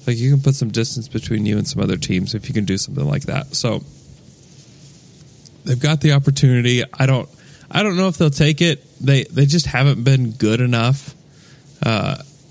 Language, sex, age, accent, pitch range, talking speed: English, male, 20-39, American, 110-145 Hz, 195 wpm